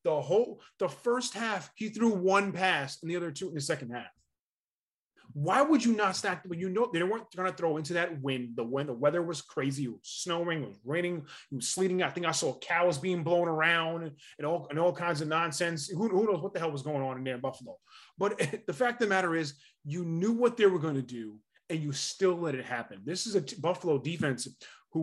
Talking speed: 250 wpm